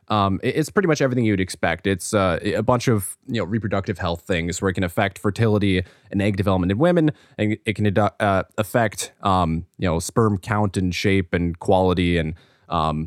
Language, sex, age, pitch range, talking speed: English, male, 20-39, 95-125 Hz, 195 wpm